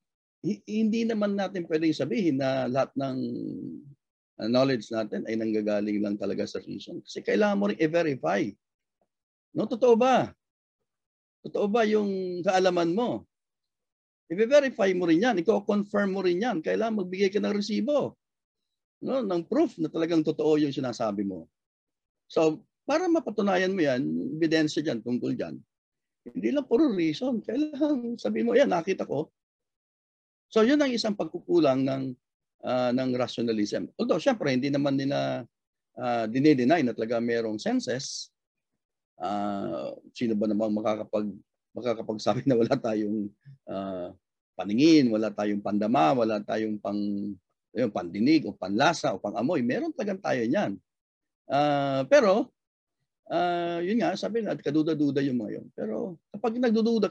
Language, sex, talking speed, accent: Filipino, male, 135 wpm, native